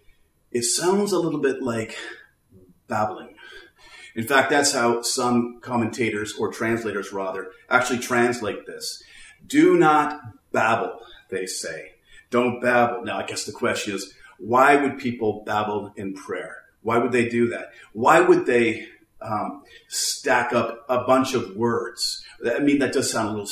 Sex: male